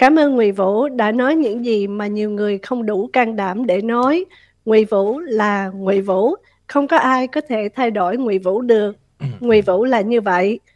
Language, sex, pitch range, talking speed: Vietnamese, female, 210-255 Hz, 205 wpm